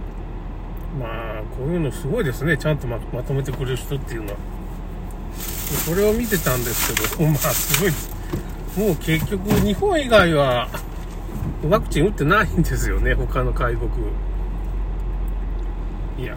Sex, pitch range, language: male, 80-130 Hz, Japanese